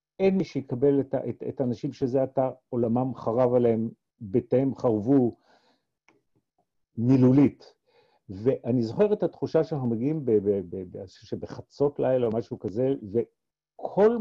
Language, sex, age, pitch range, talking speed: Hebrew, male, 50-69, 125-170 Hz, 120 wpm